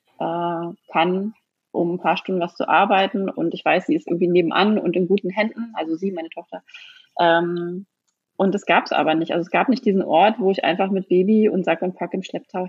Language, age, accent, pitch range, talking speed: German, 30-49, German, 170-200 Hz, 220 wpm